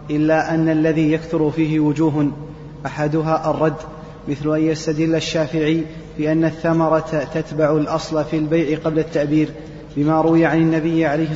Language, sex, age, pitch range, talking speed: Arabic, male, 30-49, 155-165 Hz, 135 wpm